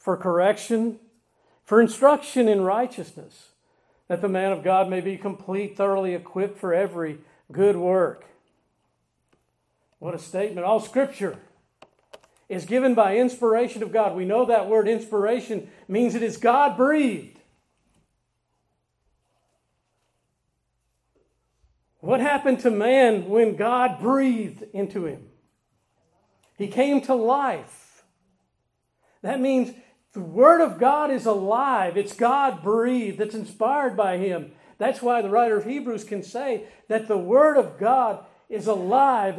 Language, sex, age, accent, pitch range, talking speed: English, male, 50-69, American, 200-260 Hz, 130 wpm